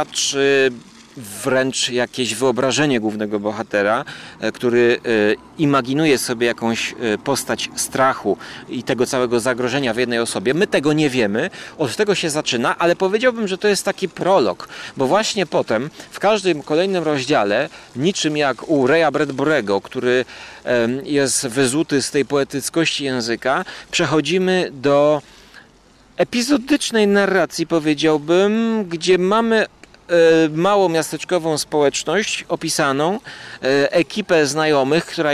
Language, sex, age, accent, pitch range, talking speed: Polish, male, 40-59, native, 135-185 Hz, 110 wpm